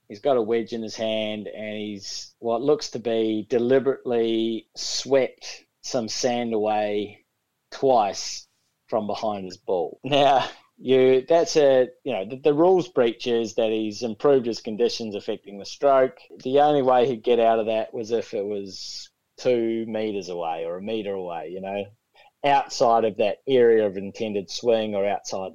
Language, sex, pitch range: English, male, 110-130 Hz